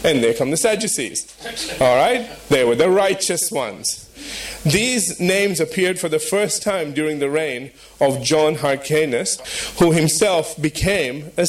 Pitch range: 140-185 Hz